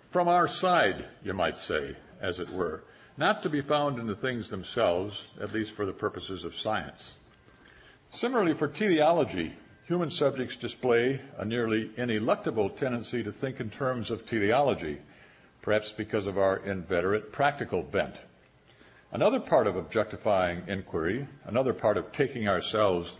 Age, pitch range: 60-79, 100-130 Hz